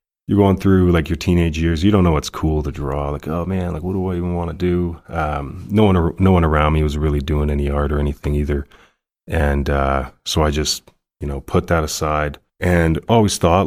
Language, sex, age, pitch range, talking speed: English, male, 30-49, 75-90 Hz, 235 wpm